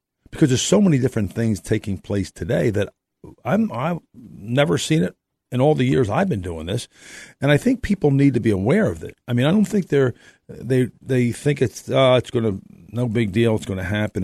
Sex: male